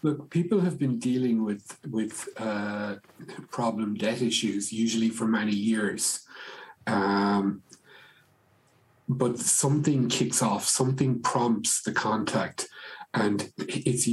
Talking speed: 110 wpm